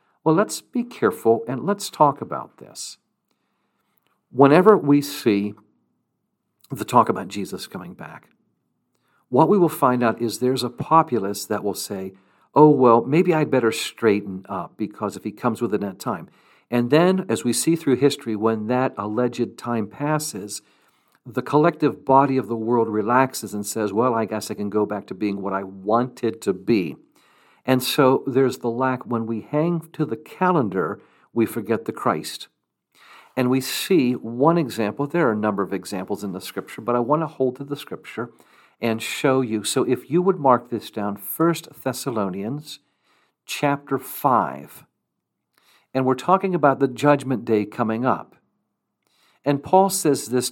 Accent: American